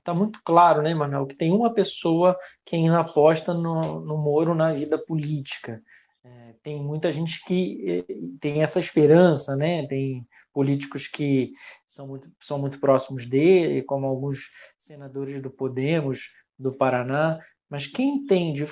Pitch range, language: 135-165 Hz, Portuguese